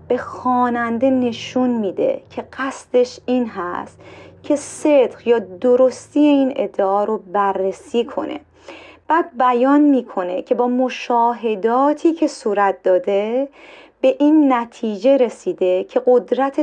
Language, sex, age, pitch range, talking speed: Persian, female, 30-49, 210-270 Hz, 115 wpm